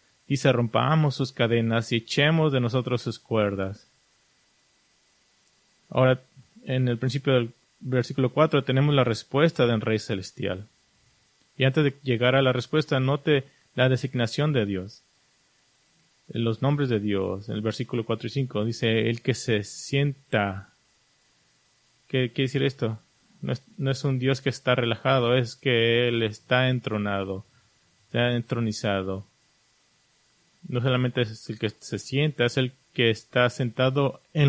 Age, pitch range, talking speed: 30-49, 110-135 Hz, 145 wpm